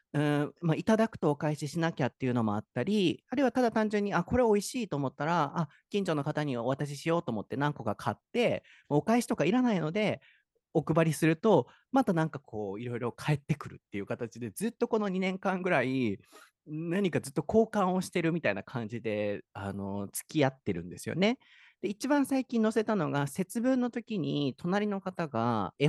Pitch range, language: 120-205 Hz, Japanese